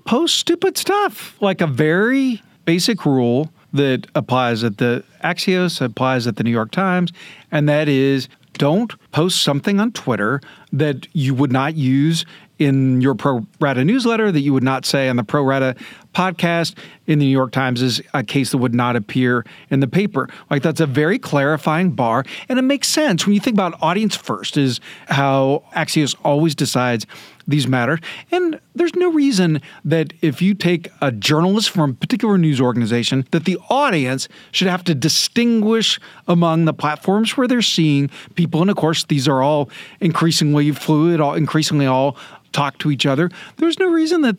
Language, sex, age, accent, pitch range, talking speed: English, male, 40-59, American, 140-185 Hz, 180 wpm